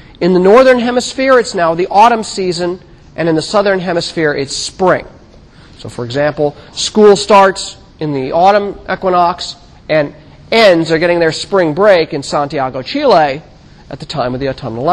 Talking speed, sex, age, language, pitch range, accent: 165 wpm, male, 40-59, English, 145-200 Hz, American